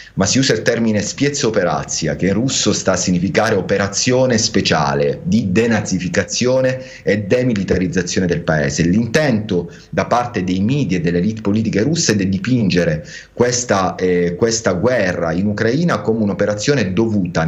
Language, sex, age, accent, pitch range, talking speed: Italian, male, 30-49, native, 90-115 Hz, 150 wpm